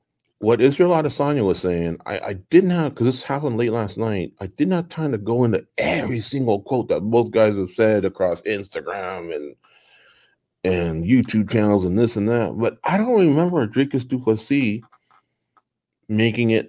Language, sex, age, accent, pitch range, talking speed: English, male, 30-49, American, 95-130 Hz, 175 wpm